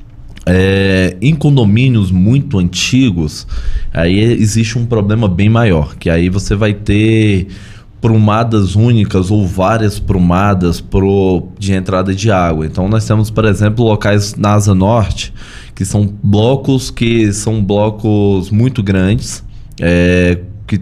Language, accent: Portuguese, Brazilian